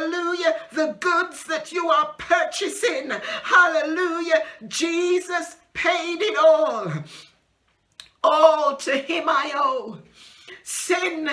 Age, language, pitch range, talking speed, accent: 50-69, English, 295-330 Hz, 95 wpm, British